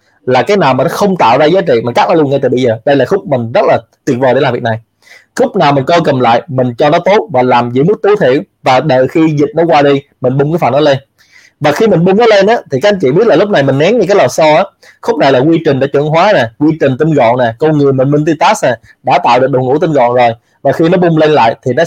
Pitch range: 130-170 Hz